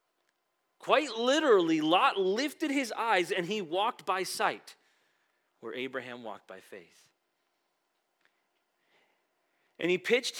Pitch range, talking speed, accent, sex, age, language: 155-220 Hz, 110 wpm, American, male, 30-49, English